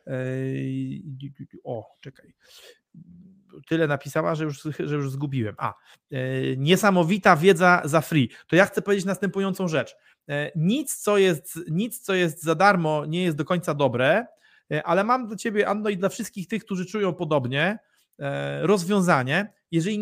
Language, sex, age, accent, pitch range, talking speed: Polish, male, 30-49, native, 155-205 Hz, 140 wpm